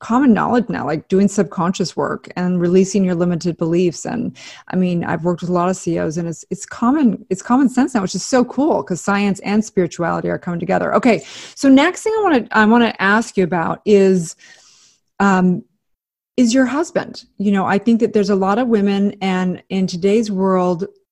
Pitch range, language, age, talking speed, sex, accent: 180-215 Hz, English, 30-49, 205 wpm, female, American